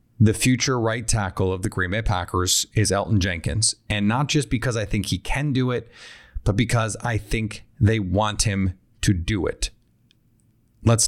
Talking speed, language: 180 wpm, English